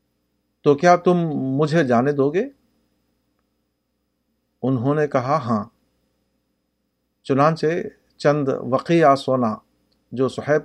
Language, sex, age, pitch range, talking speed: Urdu, male, 50-69, 125-155 Hz, 95 wpm